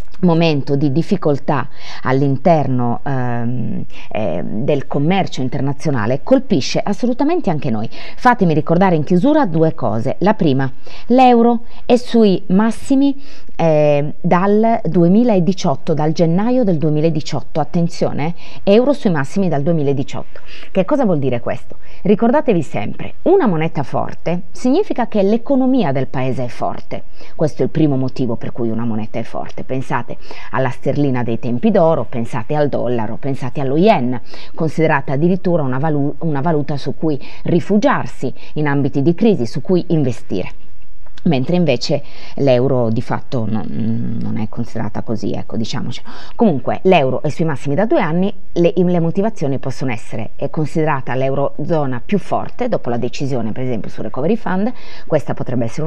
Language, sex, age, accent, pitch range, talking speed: Italian, female, 30-49, native, 130-190 Hz, 145 wpm